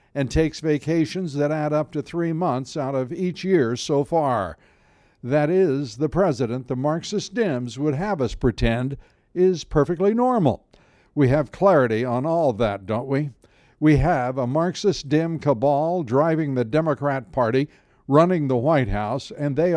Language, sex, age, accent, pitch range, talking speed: English, male, 60-79, American, 135-180 Hz, 160 wpm